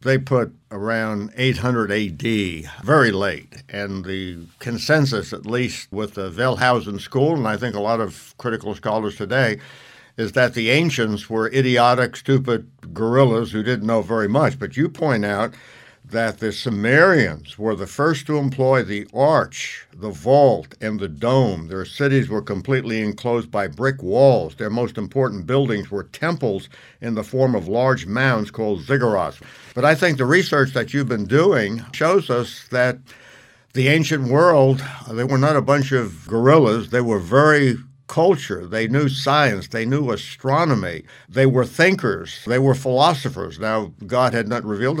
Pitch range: 105-135 Hz